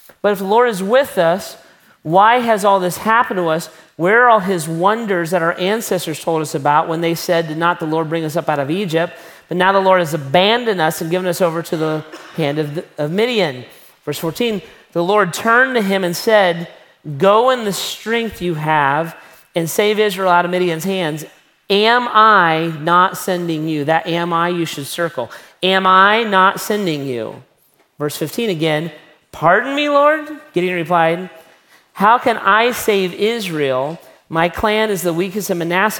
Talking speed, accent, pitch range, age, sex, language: 185 wpm, American, 165-210 Hz, 40-59, male, English